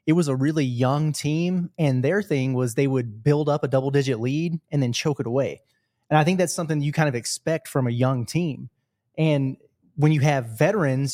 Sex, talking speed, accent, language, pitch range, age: male, 215 wpm, American, English, 130-170 Hz, 20-39